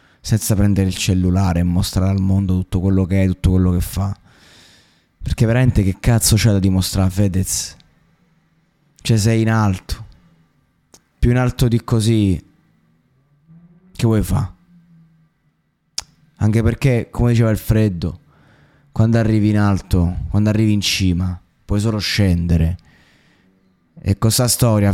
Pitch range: 95-120 Hz